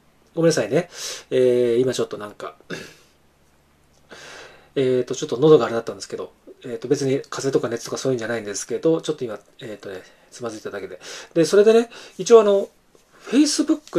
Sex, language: male, Japanese